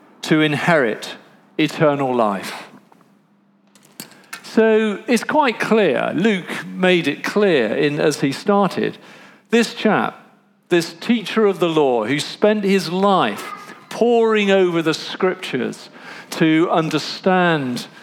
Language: English